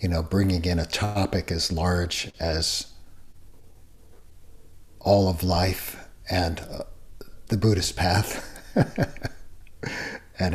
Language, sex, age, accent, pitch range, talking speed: English, male, 60-79, American, 80-95 Hz, 100 wpm